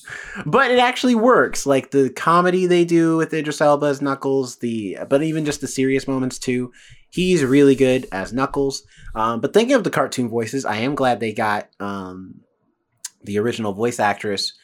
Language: English